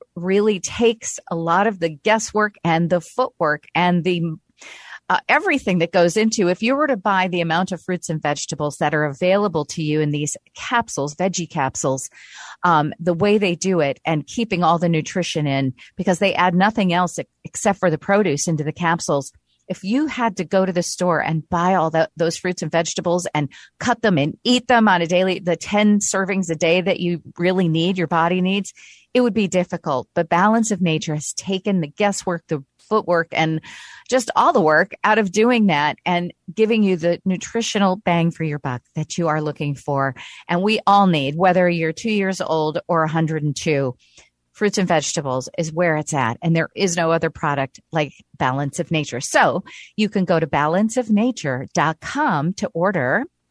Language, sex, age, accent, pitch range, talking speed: English, female, 40-59, American, 155-200 Hz, 195 wpm